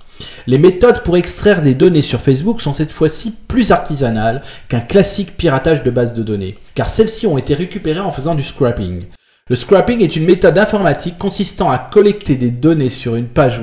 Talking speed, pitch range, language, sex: 190 wpm, 120-185 Hz, Italian, male